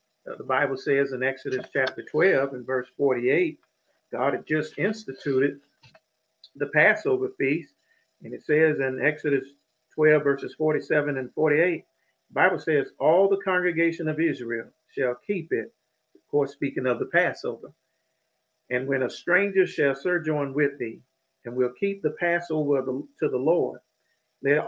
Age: 50-69